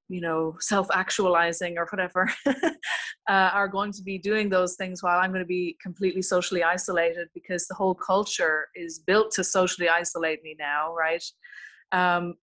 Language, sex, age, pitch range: English, female, 30-49, 175-210 Hz